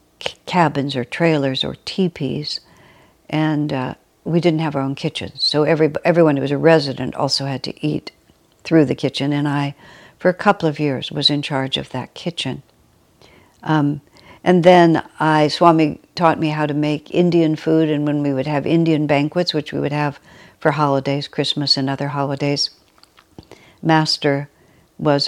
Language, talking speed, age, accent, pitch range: English, 170 wpm, 60-79, American, 140-155 Hz